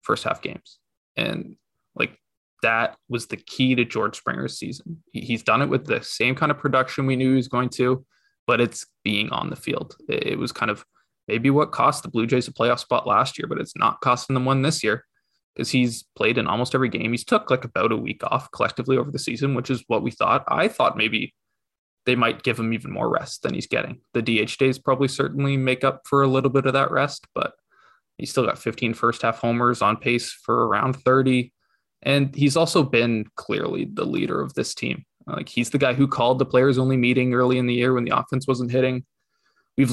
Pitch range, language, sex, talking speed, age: 120-135 Hz, English, male, 225 wpm, 20-39